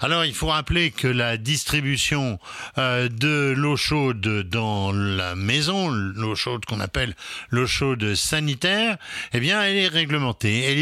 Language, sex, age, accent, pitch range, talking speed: French, male, 60-79, French, 115-155 Hz, 145 wpm